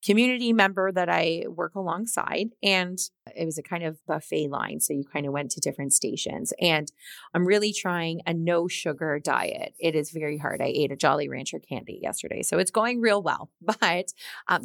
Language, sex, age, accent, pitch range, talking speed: English, female, 30-49, American, 165-205 Hz, 195 wpm